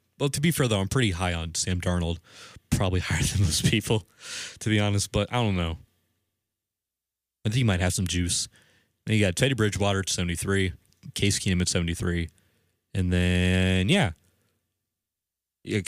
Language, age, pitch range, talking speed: English, 20-39, 90-110 Hz, 170 wpm